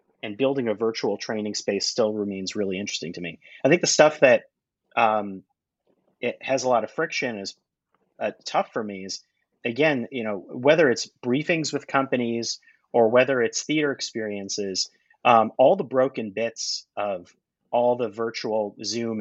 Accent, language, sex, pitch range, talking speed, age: American, English, male, 110-135 Hz, 165 wpm, 30-49